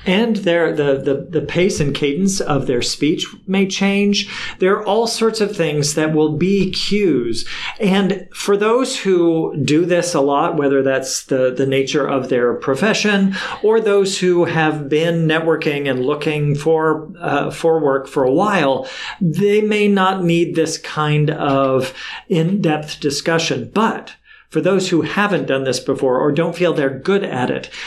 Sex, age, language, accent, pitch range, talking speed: male, 50-69, English, American, 145-190 Hz, 170 wpm